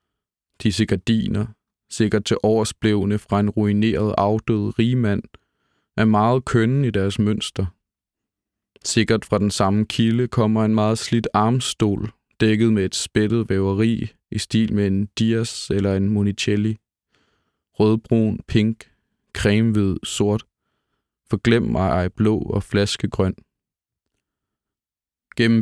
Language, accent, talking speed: Danish, native, 115 wpm